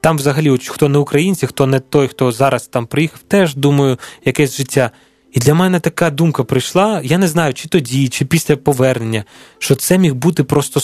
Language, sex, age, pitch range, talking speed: Ukrainian, male, 20-39, 130-155 Hz, 195 wpm